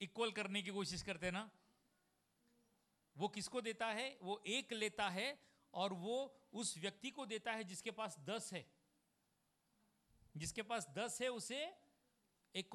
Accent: native